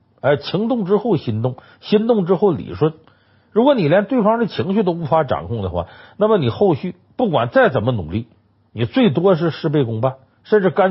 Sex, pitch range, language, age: male, 110-175 Hz, Chinese, 50-69